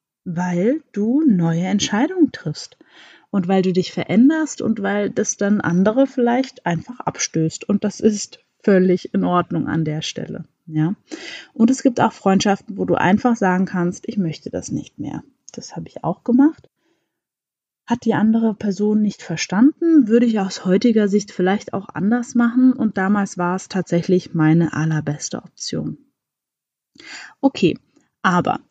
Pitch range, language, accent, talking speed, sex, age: 185-250 Hz, German, German, 155 wpm, female, 20-39